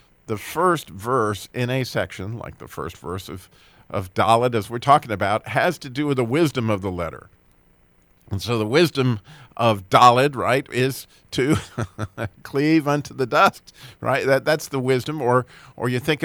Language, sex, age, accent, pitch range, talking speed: English, male, 50-69, American, 100-135 Hz, 175 wpm